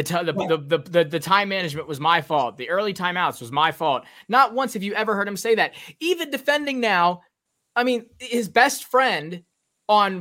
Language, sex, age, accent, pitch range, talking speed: English, male, 20-39, American, 175-240 Hz, 200 wpm